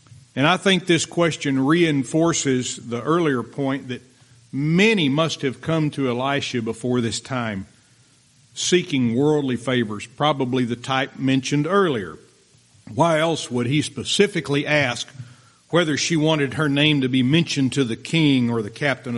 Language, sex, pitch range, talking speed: English, male, 115-150 Hz, 145 wpm